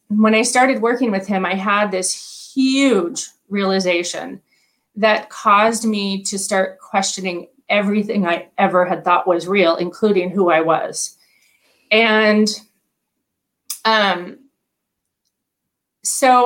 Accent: American